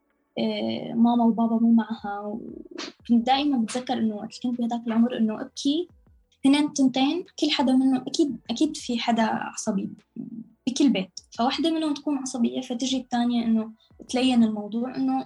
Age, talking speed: 20-39, 140 wpm